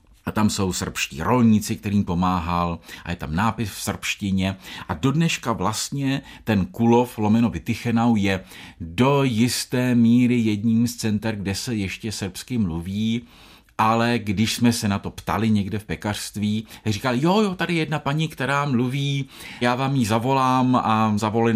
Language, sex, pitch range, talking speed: Czech, male, 90-130 Hz, 160 wpm